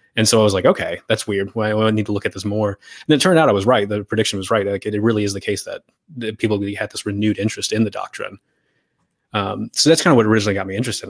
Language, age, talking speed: English, 20-39, 285 wpm